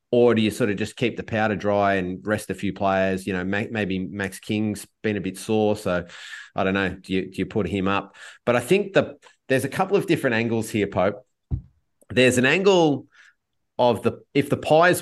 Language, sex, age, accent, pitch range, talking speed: English, male, 30-49, Australian, 105-130 Hz, 220 wpm